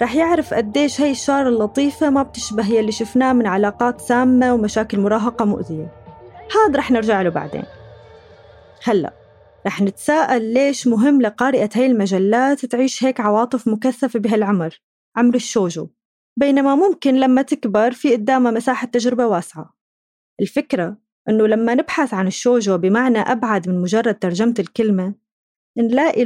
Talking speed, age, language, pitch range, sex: 135 wpm, 20-39, Arabic, 215-265 Hz, female